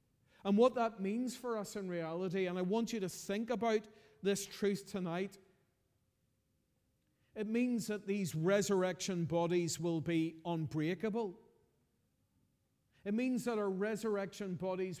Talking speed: 130 wpm